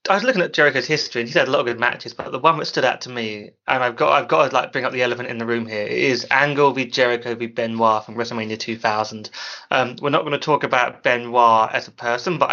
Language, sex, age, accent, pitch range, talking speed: English, male, 20-39, British, 120-135 Hz, 280 wpm